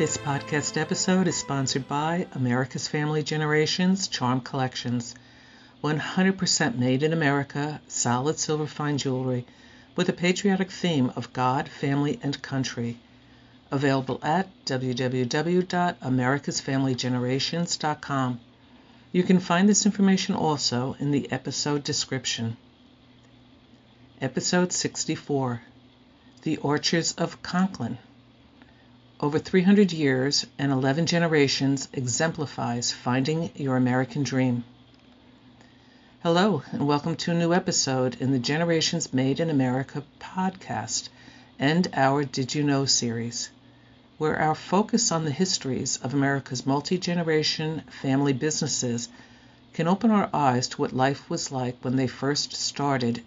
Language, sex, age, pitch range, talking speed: English, female, 60-79, 125-160 Hz, 115 wpm